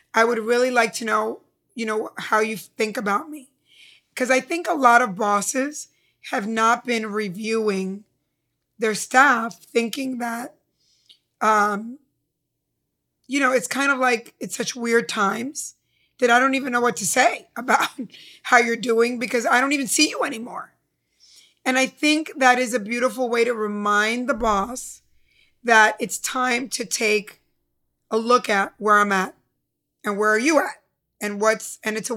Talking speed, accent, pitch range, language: 170 wpm, American, 215-255 Hz, English